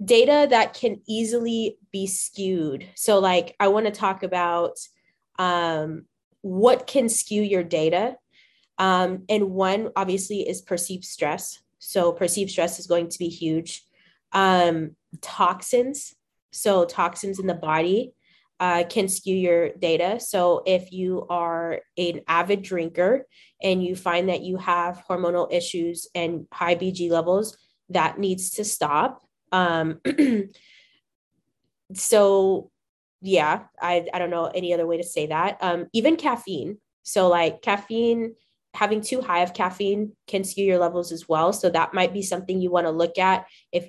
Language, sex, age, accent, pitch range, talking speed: English, female, 20-39, American, 170-205 Hz, 150 wpm